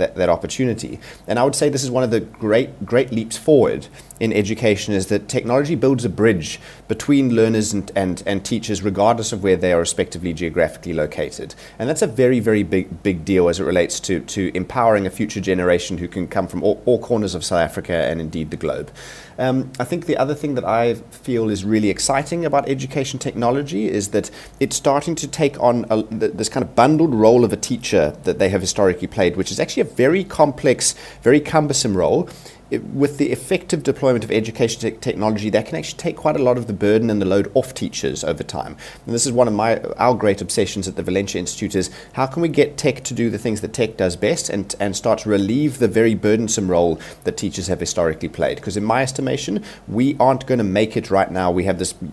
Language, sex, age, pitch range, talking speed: English, male, 30-49, 95-130 Hz, 220 wpm